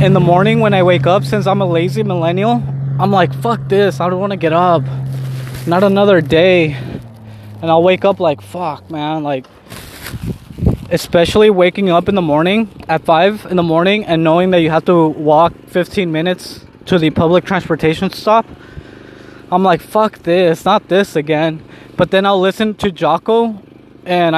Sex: male